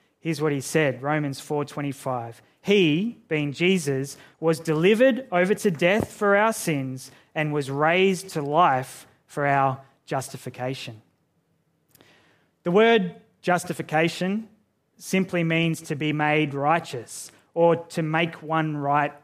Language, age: English, 20-39